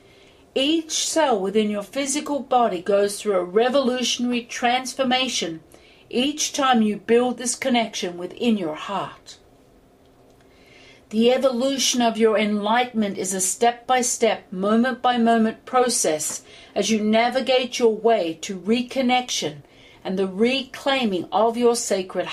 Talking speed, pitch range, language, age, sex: 115 wpm, 205-255 Hz, English, 50-69, female